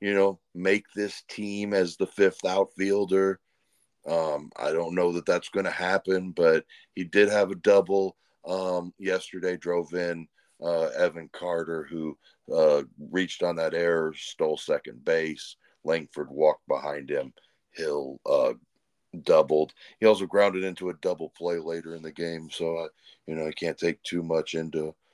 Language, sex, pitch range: English, male, 90-110 Hz